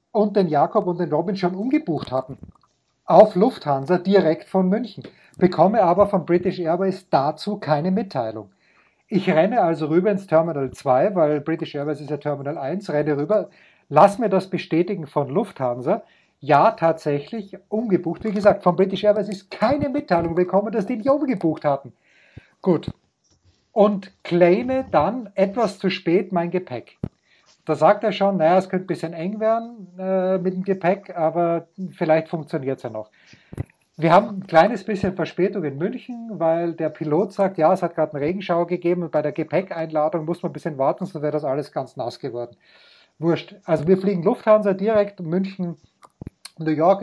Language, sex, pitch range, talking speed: German, male, 160-200 Hz, 170 wpm